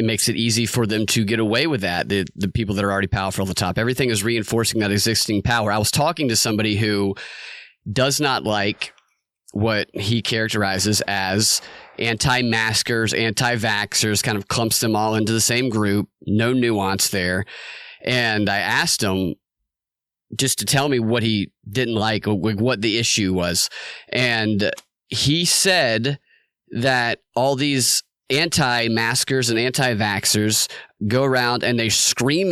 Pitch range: 110-135 Hz